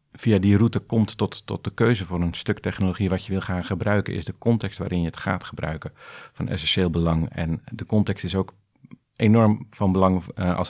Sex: male